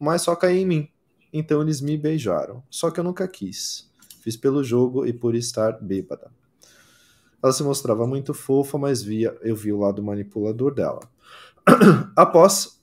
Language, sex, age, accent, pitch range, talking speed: Portuguese, male, 20-39, Brazilian, 115-150 Hz, 165 wpm